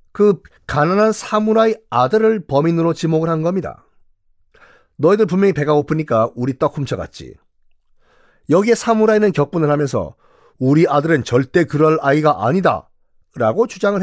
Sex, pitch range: male, 130-210 Hz